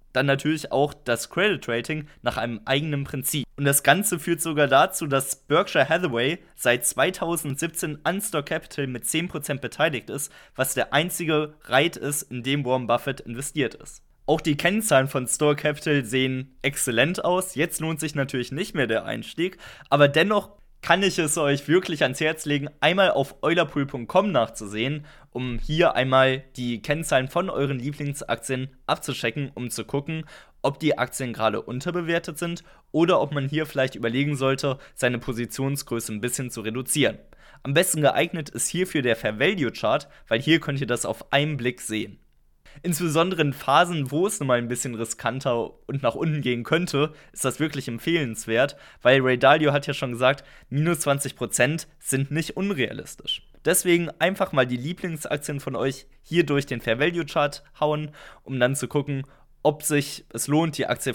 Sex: male